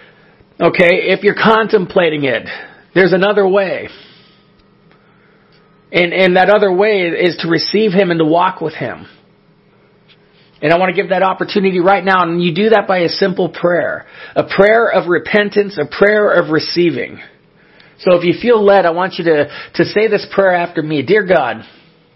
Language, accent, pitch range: English, American, 165-200 Hz